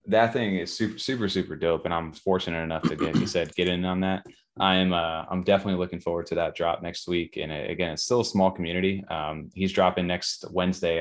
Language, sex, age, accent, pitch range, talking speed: English, male, 20-39, American, 80-90 Hz, 240 wpm